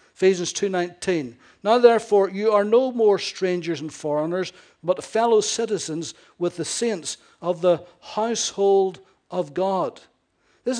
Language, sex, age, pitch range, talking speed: English, male, 60-79, 170-205 Hz, 130 wpm